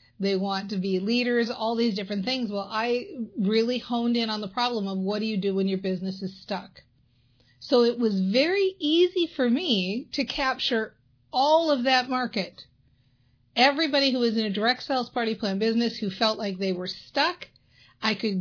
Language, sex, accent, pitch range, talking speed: English, female, American, 195-240 Hz, 190 wpm